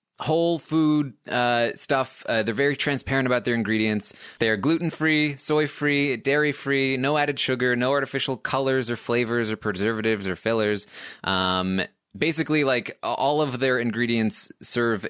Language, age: English, 20-39